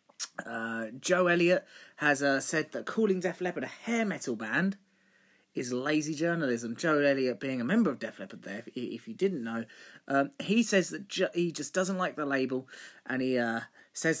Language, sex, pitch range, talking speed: English, male, 120-165 Hz, 195 wpm